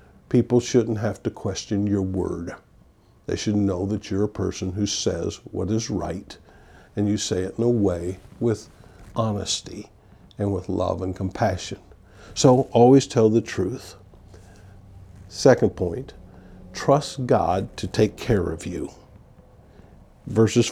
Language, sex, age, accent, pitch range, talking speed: English, male, 50-69, American, 100-115 Hz, 140 wpm